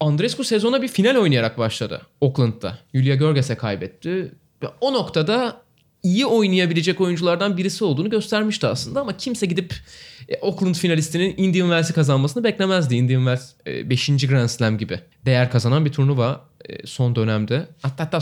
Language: Turkish